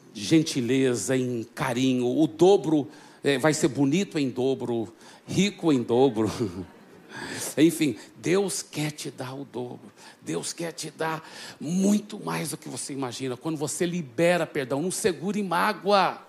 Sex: male